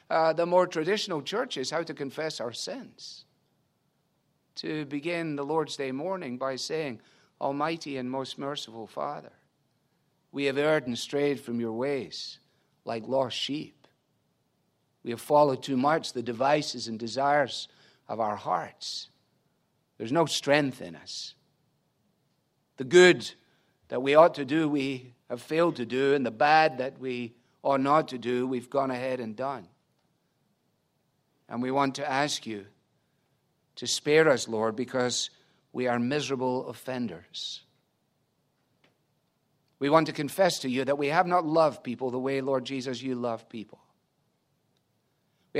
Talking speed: 145 wpm